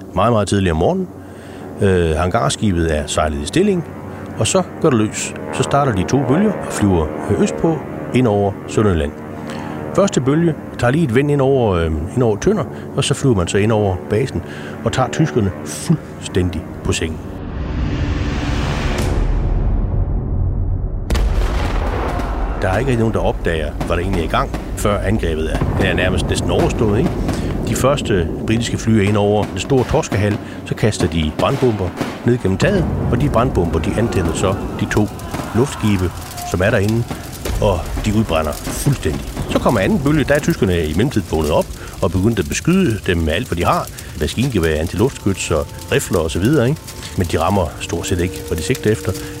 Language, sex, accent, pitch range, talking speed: Danish, male, native, 80-115 Hz, 175 wpm